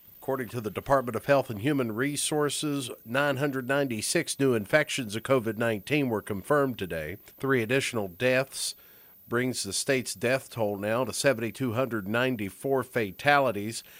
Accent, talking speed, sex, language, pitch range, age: American, 125 wpm, male, English, 110-145 Hz, 50-69